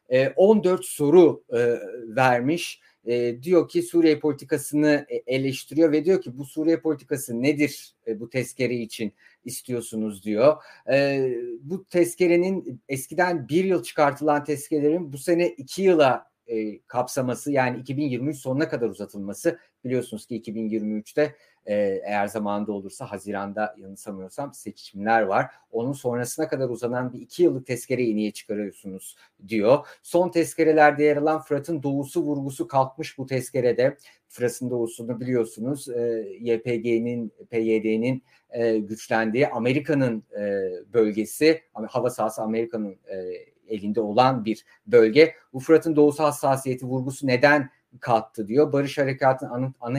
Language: Turkish